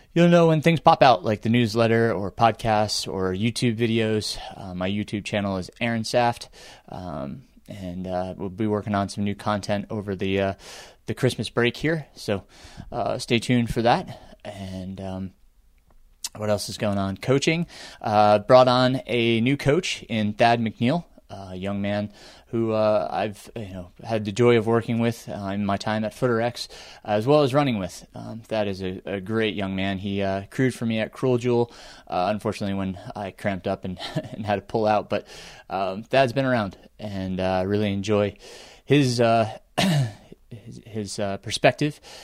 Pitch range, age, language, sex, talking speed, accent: 100-120 Hz, 20-39, English, male, 185 wpm, American